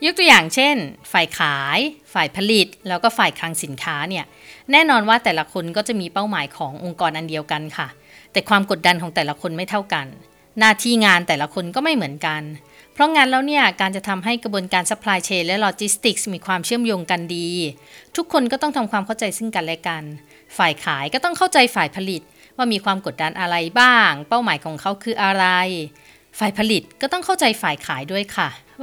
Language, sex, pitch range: Thai, female, 175-240 Hz